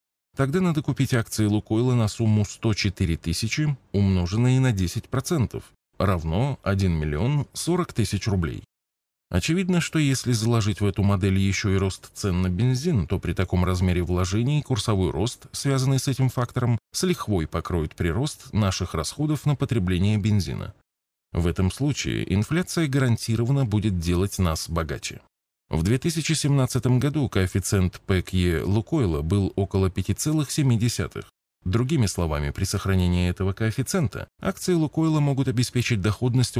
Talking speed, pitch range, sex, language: 135 wpm, 95-130 Hz, male, Russian